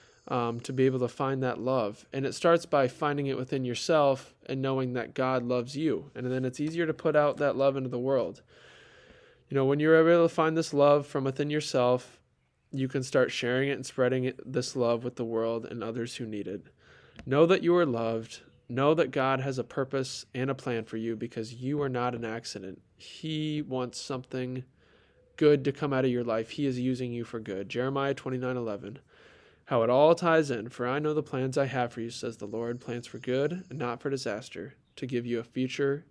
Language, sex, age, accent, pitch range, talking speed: English, male, 20-39, American, 120-140 Hz, 225 wpm